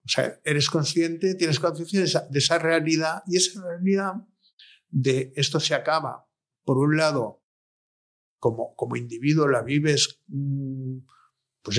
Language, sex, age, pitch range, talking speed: Spanish, male, 50-69, 120-160 Hz, 130 wpm